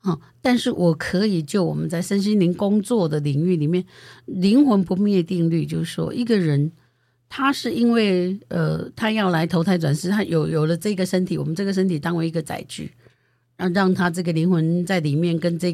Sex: female